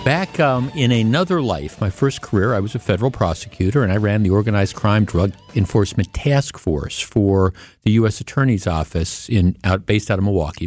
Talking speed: 190 wpm